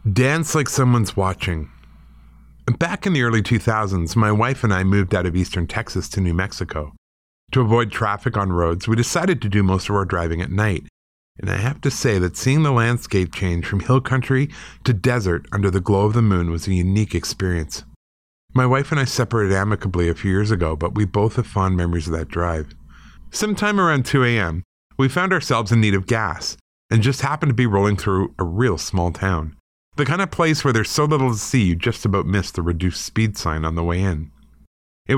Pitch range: 85-120 Hz